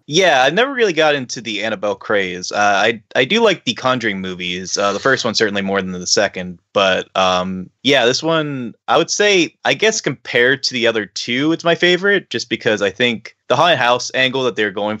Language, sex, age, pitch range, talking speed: English, male, 20-39, 100-125 Hz, 220 wpm